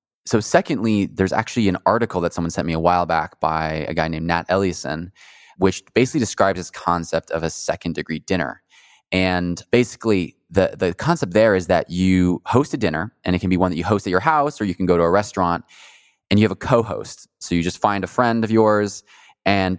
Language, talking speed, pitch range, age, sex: English, 220 wpm, 85-105 Hz, 20-39, male